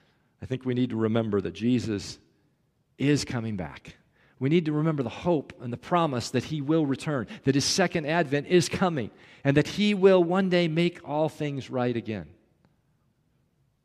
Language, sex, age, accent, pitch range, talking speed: English, male, 40-59, American, 120-160 Hz, 180 wpm